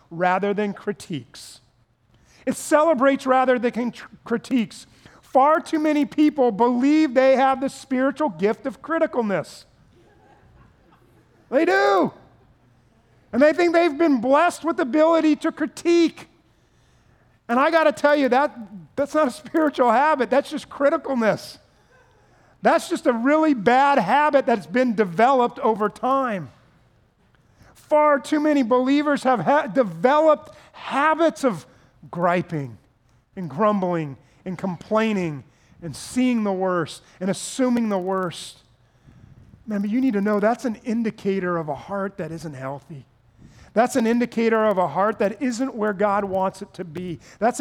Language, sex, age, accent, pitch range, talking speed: English, male, 40-59, American, 160-260 Hz, 135 wpm